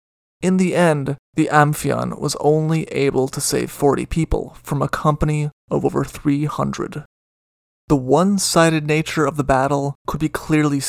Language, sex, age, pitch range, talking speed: English, male, 30-49, 135-165 Hz, 160 wpm